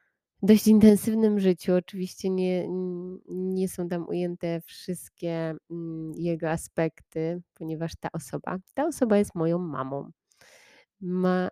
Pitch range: 160-185 Hz